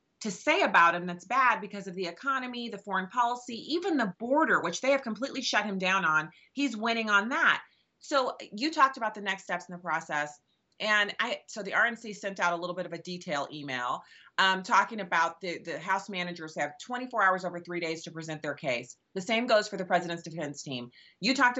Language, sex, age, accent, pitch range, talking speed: English, female, 30-49, American, 165-225 Hz, 220 wpm